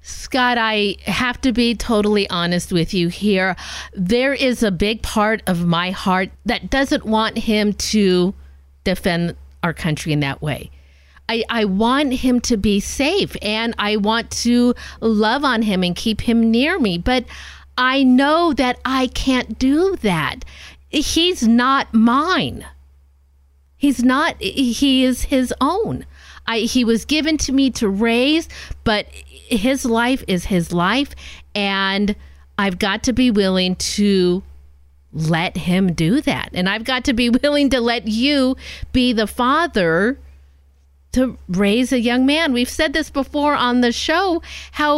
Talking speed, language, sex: 150 wpm, English, female